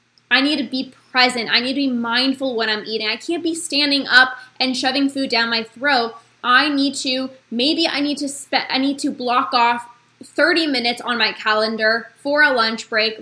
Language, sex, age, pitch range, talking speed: English, female, 10-29, 235-275 Hz, 210 wpm